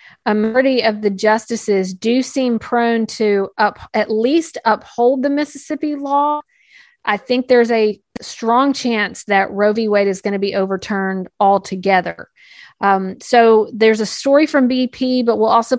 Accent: American